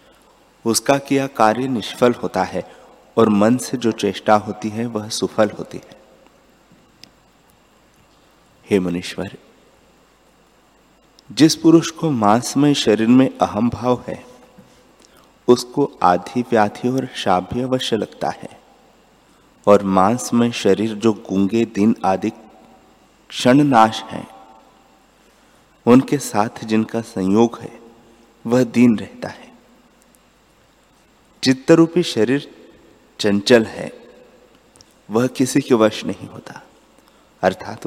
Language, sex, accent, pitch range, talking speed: Hindi, male, native, 105-125 Hz, 110 wpm